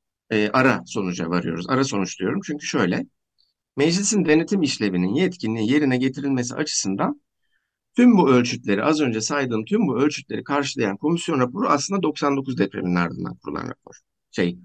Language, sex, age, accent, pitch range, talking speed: Turkish, male, 50-69, native, 105-160 Hz, 140 wpm